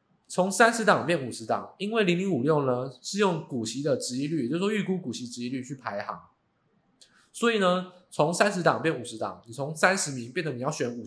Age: 20-39